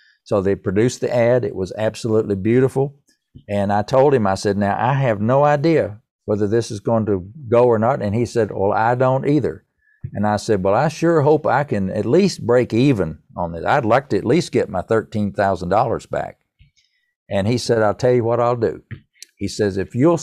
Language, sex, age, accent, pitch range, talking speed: English, male, 50-69, American, 100-130 Hz, 220 wpm